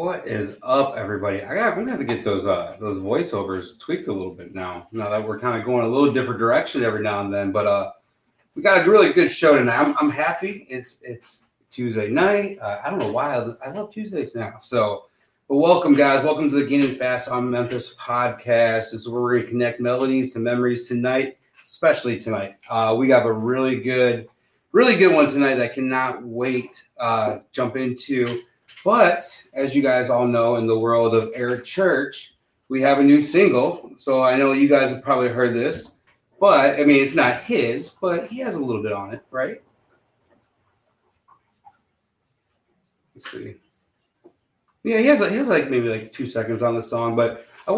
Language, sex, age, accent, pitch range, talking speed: English, male, 30-49, American, 115-140 Hz, 195 wpm